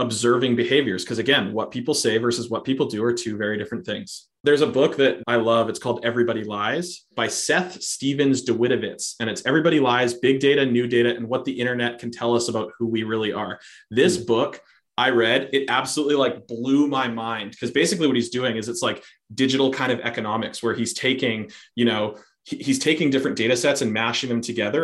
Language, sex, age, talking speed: English, male, 20-39, 210 wpm